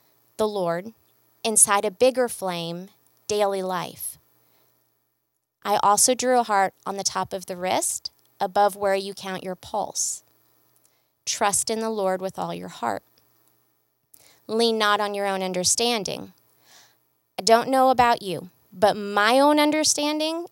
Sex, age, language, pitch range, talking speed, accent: female, 20-39, English, 185-245 Hz, 140 wpm, American